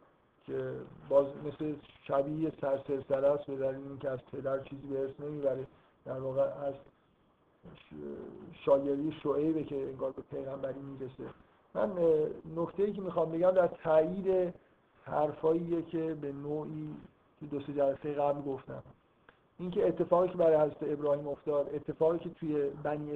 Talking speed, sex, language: 135 wpm, male, Persian